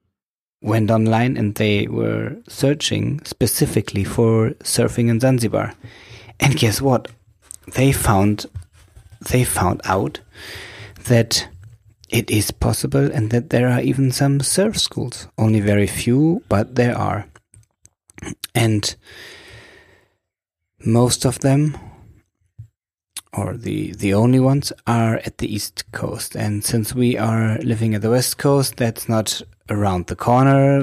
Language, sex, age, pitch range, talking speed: English, male, 30-49, 105-120 Hz, 125 wpm